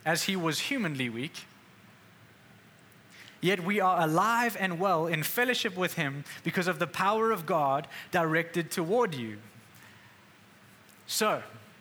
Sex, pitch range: male, 150-200 Hz